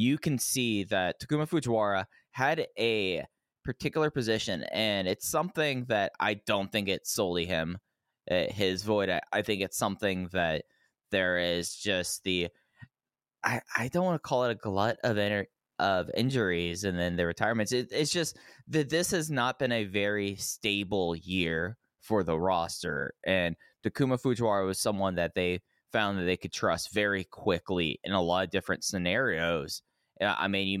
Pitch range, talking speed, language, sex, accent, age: 90-115 Hz, 165 wpm, English, male, American, 20-39